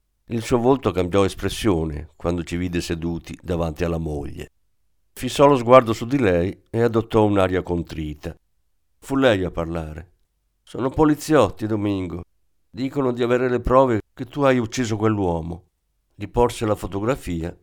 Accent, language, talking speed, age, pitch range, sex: native, Italian, 145 wpm, 50-69, 90-135 Hz, male